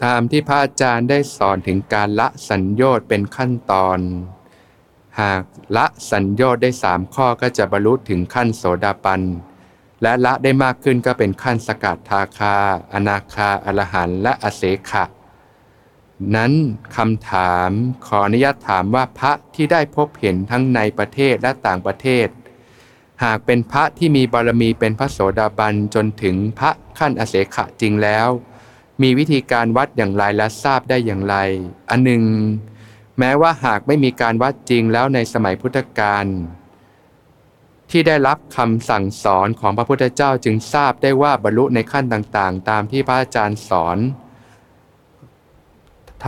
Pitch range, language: 100-130 Hz, Thai